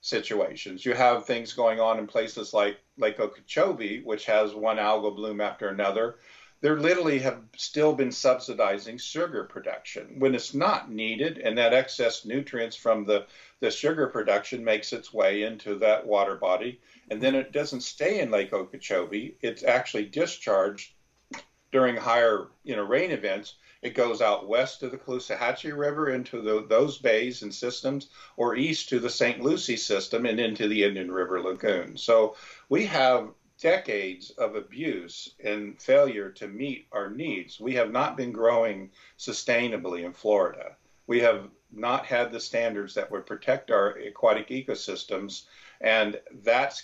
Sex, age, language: male, 50-69, English